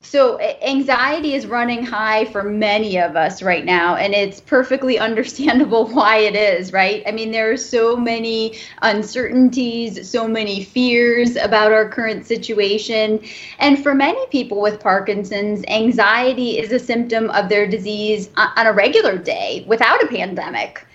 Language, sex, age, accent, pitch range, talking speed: English, female, 20-39, American, 205-245 Hz, 150 wpm